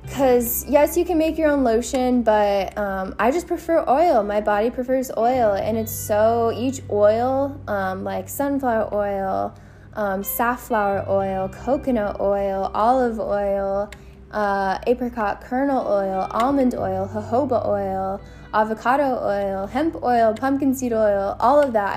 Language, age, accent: English, 10-29, American